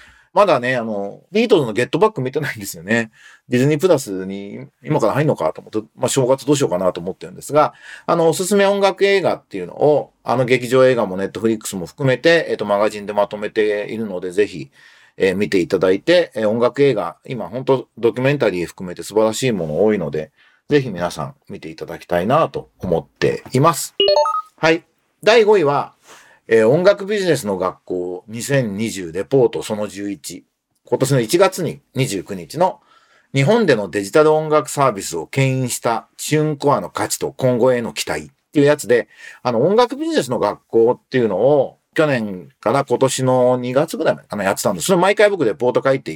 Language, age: Japanese, 40-59